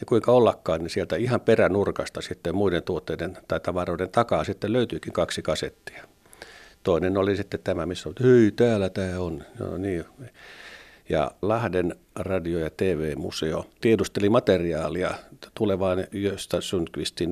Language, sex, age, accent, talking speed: Finnish, male, 50-69, native, 140 wpm